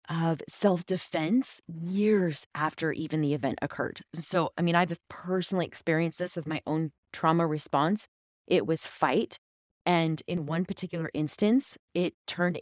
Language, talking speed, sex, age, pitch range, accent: English, 145 wpm, female, 20-39, 155-190 Hz, American